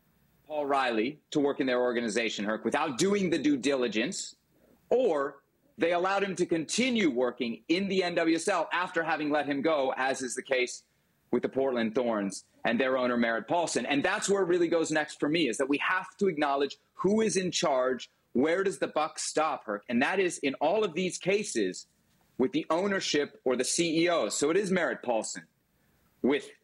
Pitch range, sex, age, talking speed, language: 130-180 Hz, male, 30-49, 195 wpm, English